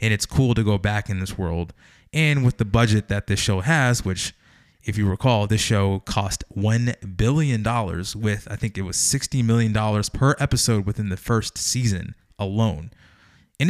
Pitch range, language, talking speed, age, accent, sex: 95-115 Hz, English, 190 wpm, 20-39, American, male